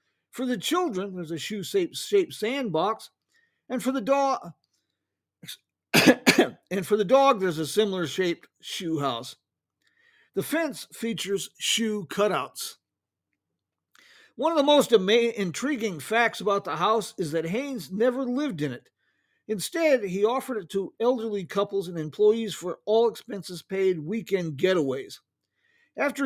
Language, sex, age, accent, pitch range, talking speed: English, male, 50-69, American, 180-235 Hz, 135 wpm